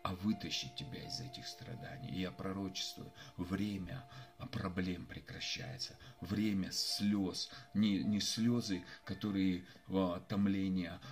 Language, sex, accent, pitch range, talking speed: Russian, male, native, 95-105 Hz, 105 wpm